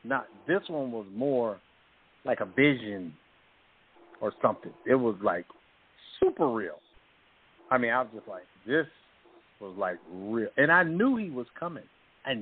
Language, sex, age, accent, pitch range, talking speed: English, male, 50-69, American, 115-150 Hz, 155 wpm